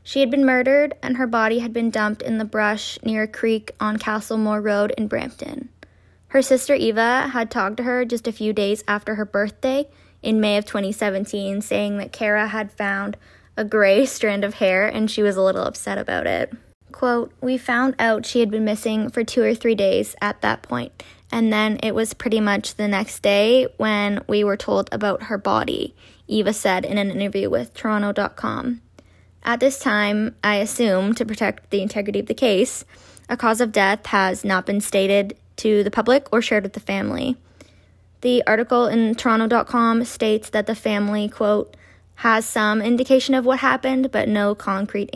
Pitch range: 205-240 Hz